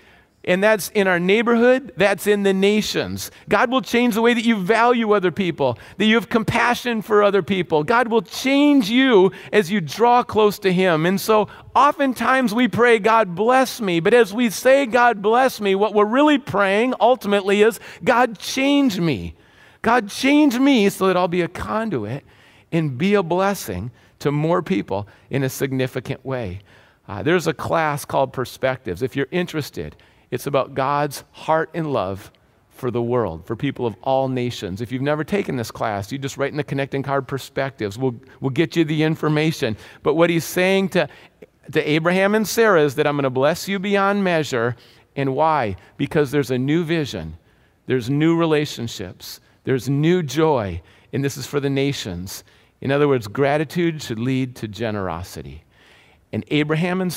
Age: 40-59